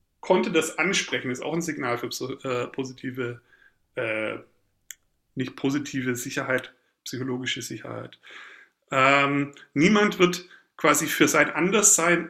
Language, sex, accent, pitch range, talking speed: German, male, German, 140-180 Hz, 110 wpm